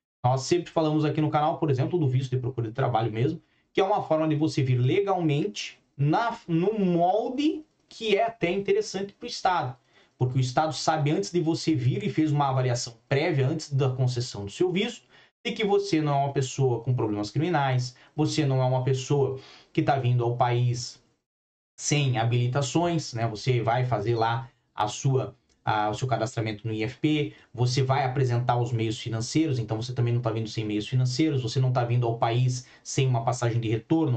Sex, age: male, 20-39